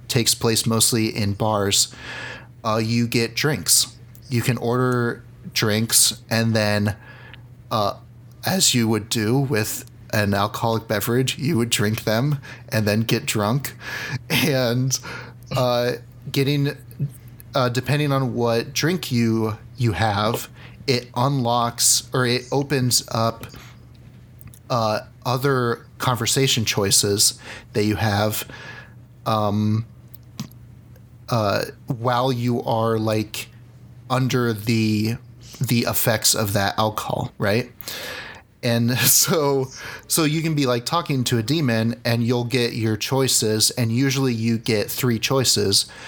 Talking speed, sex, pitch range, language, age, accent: 120 wpm, male, 110-125 Hz, English, 30-49, American